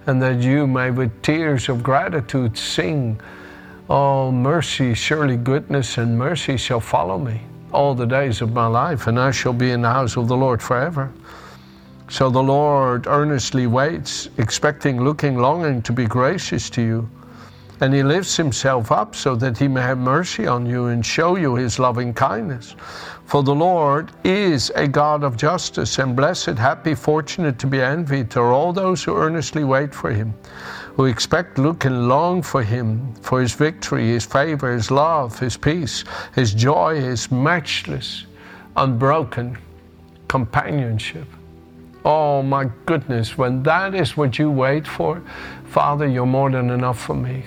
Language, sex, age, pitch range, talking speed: English, male, 60-79, 120-145 Hz, 165 wpm